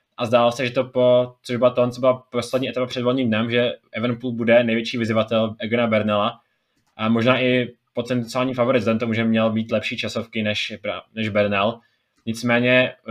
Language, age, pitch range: Czech, 20-39, 115-125 Hz